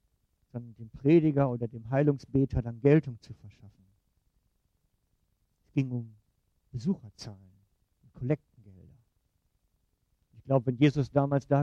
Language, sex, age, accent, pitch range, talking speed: German, male, 50-69, German, 105-145 Hz, 110 wpm